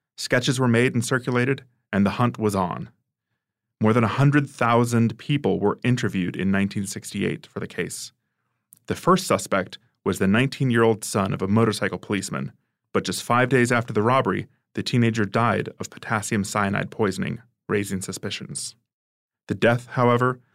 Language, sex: English, male